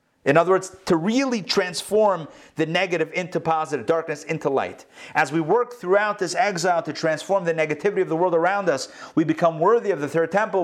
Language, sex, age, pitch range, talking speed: English, male, 30-49, 130-180 Hz, 195 wpm